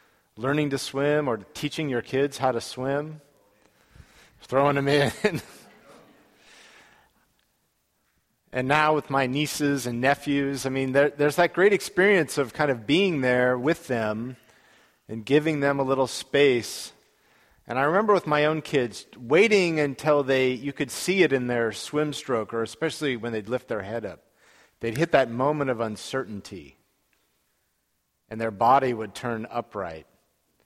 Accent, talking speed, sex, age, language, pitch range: American, 155 wpm, male, 40-59, English, 115-150 Hz